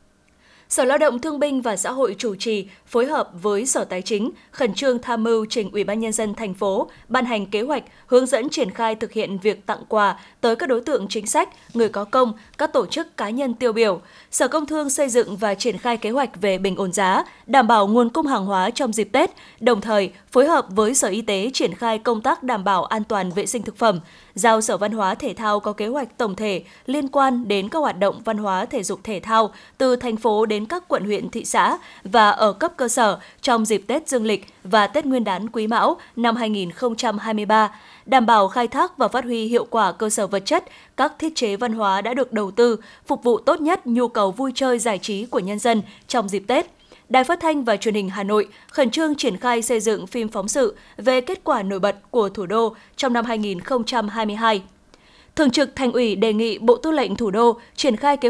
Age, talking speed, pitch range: 20-39, 235 wpm, 210-255 Hz